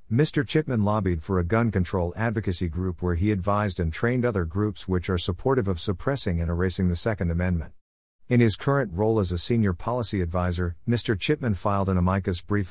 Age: 50-69